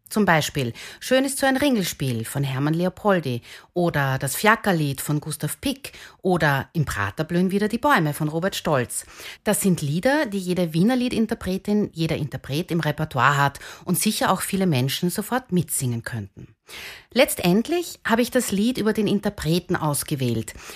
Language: German